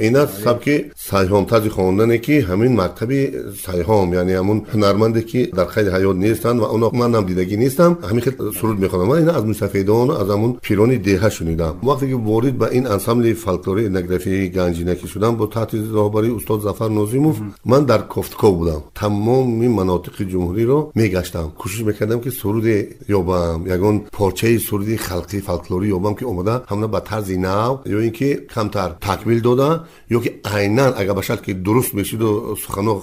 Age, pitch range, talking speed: 50-69, 90-115 Hz, 195 wpm